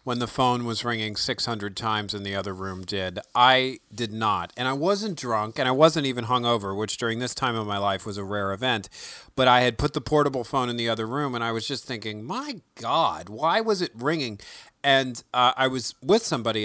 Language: English